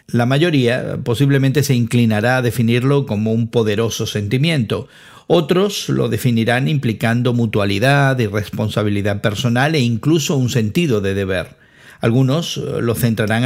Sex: male